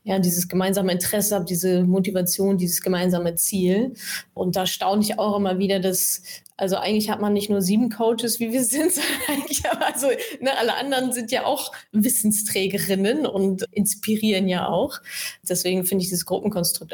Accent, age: German, 20-39